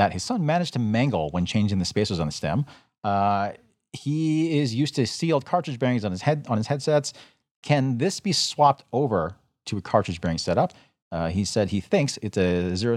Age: 40-59